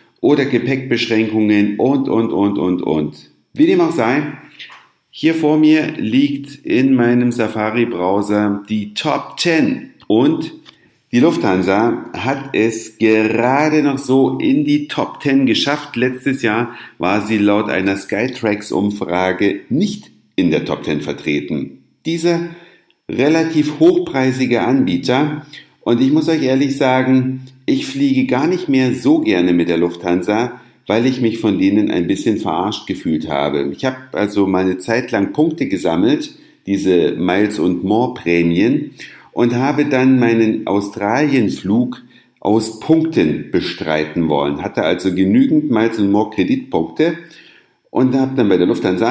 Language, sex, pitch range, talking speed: German, male, 105-150 Hz, 135 wpm